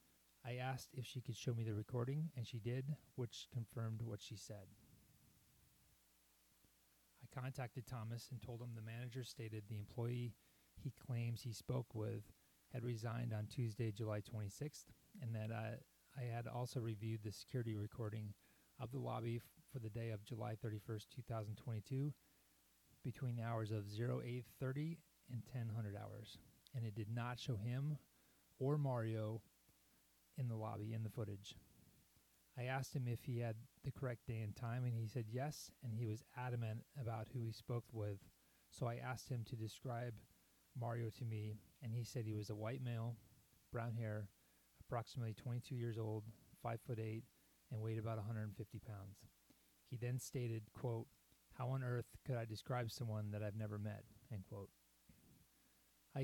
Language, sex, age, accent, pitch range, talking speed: English, male, 30-49, American, 110-125 Hz, 165 wpm